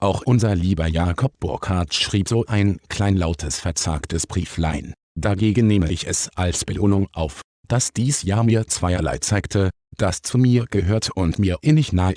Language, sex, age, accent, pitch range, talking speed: German, male, 50-69, German, 90-115 Hz, 160 wpm